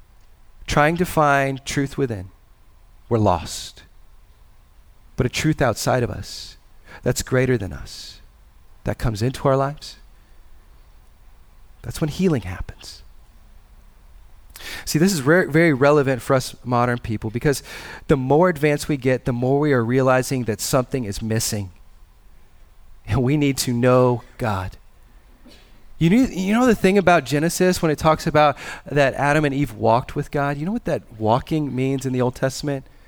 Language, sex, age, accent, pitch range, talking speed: English, male, 40-59, American, 100-145 Hz, 150 wpm